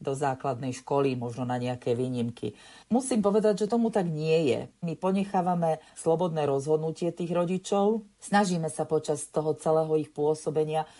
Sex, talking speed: female, 145 wpm